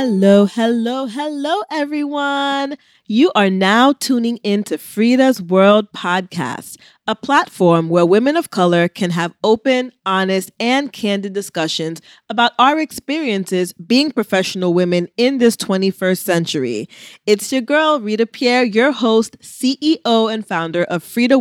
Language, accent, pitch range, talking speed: English, American, 175-245 Hz, 130 wpm